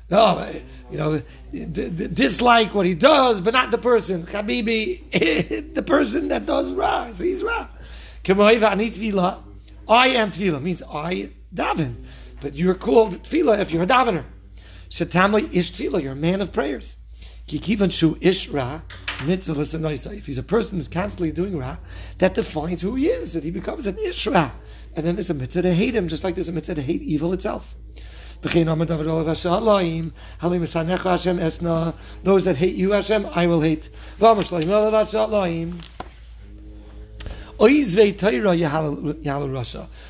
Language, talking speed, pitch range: English, 130 wpm, 155-205 Hz